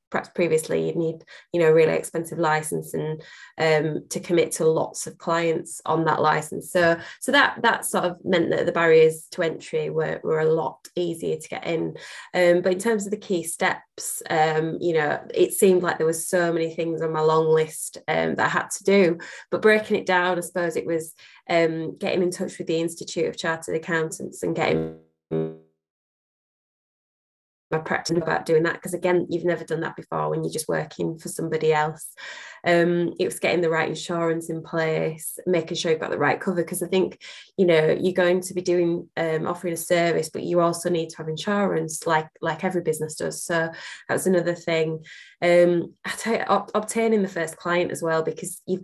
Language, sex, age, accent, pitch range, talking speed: English, female, 20-39, British, 155-175 Hz, 205 wpm